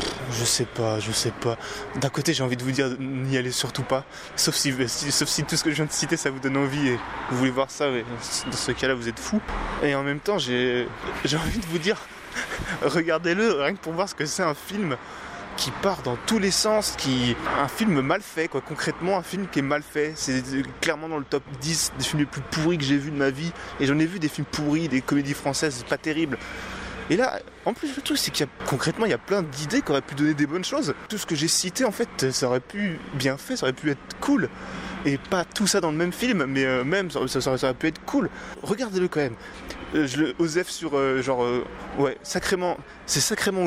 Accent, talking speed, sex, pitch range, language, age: French, 250 wpm, male, 135-170 Hz, French, 20-39